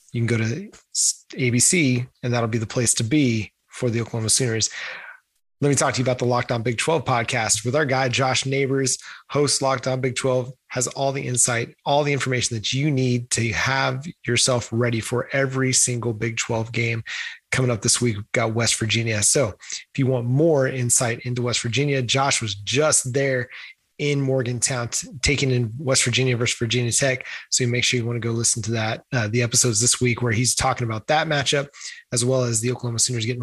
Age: 30-49